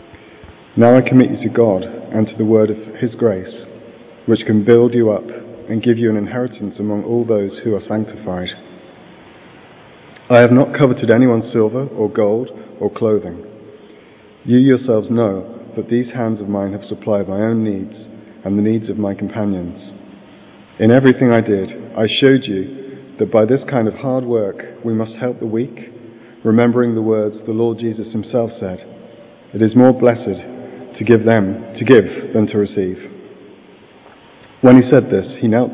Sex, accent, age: male, British, 40-59